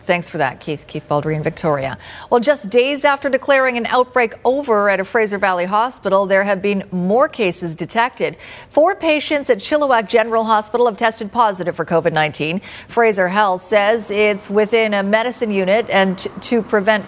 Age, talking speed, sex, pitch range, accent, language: 40-59, 170 wpm, female, 180-240 Hz, American, English